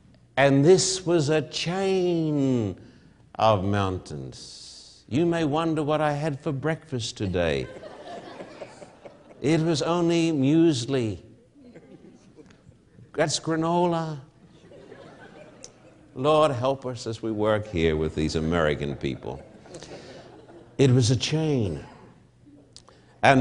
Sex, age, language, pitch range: male, 60-79, English, 110-155 Hz